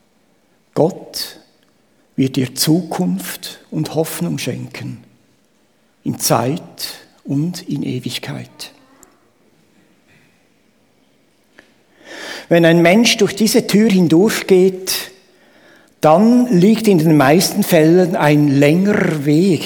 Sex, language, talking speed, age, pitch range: male, German, 85 wpm, 60-79, 150-205 Hz